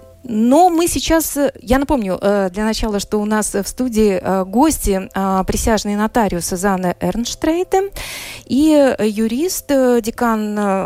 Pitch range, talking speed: 195-250 Hz, 110 wpm